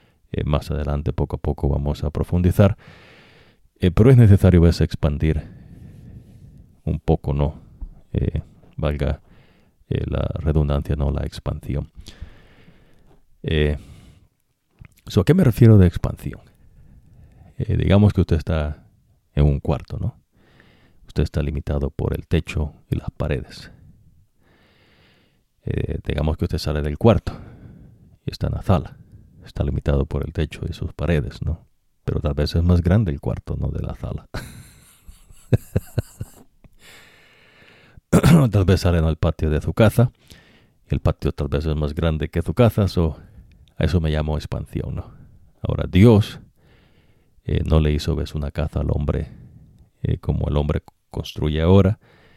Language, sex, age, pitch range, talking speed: English, male, 50-69, 75-95 Hz, 145 wpm